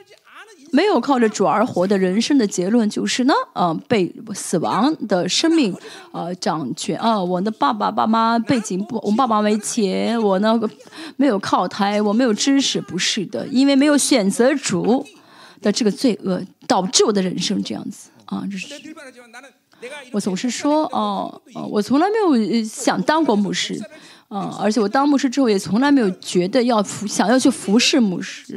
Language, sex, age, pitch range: Chinese, female, 20-39, 200-275 Hz